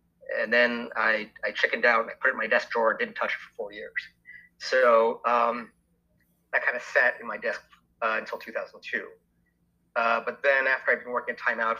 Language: English